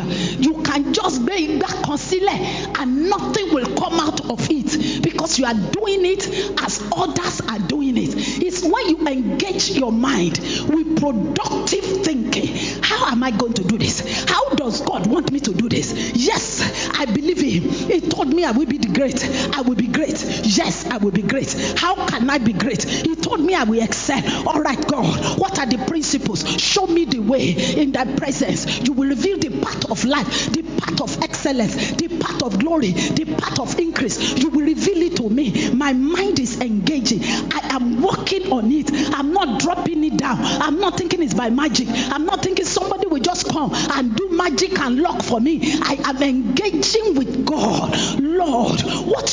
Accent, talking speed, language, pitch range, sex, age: Nigerian, 190 wpm, English, 260-350 Hz, female, 40-59